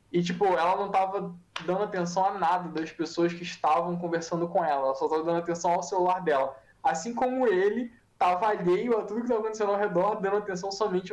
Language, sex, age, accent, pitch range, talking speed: Portuguese, male, 10-29, Brazilian, 170-220 Hz, 210 wpm